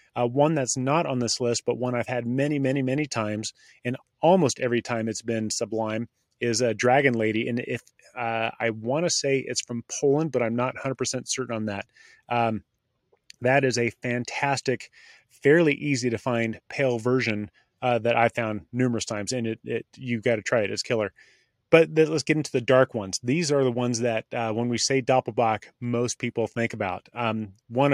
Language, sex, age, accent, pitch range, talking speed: English, male, 30-49, American, 115-135 Hz, 205 wpm